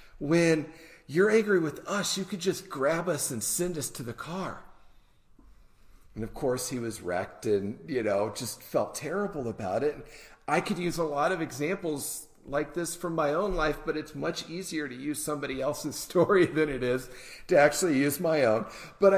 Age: 40-59